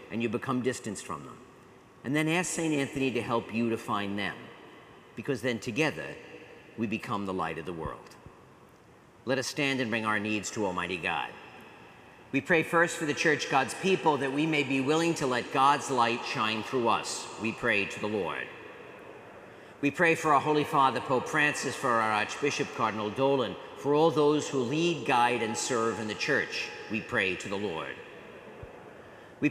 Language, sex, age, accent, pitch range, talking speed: English, male, 50-69, American, 115-150 Hz, 185 wpm